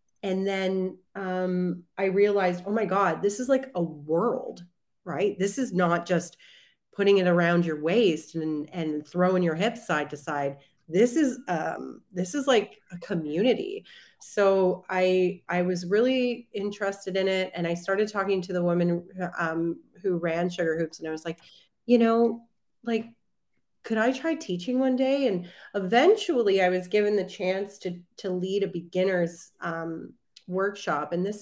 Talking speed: 170 wpm